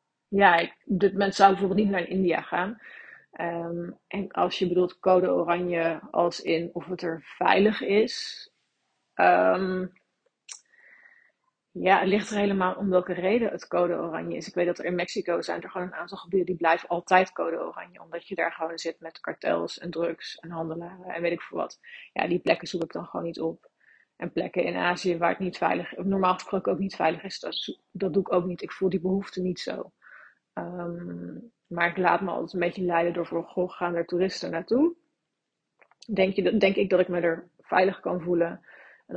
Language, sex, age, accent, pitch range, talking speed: Dutch, female, 30-49, Dutch, 170-195 Hz, 200 wpm